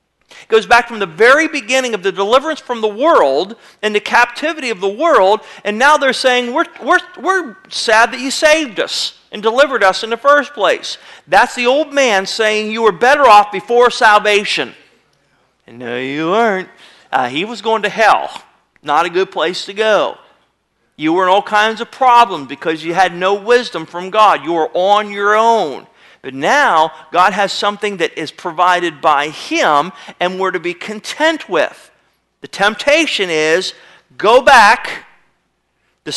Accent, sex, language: American, male, English